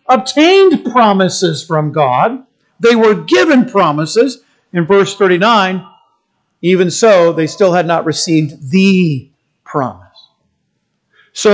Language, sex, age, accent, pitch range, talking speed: English, male, 50-69, American, 190-275 Hz, 110 wpm